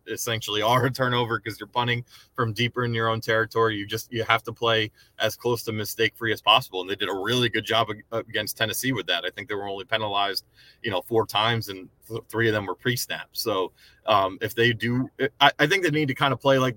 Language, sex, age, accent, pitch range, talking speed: English, male, 20-39, American, 100-120 Hz, 245 wpm